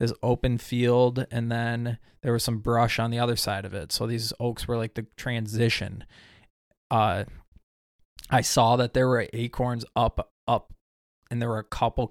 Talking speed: 180 wpm